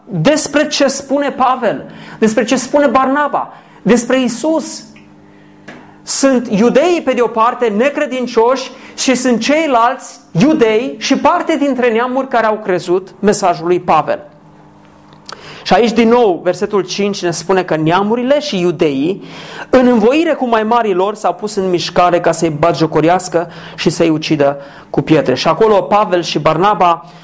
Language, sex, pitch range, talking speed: Romanian, male, 160-235 Hz, 140 wpm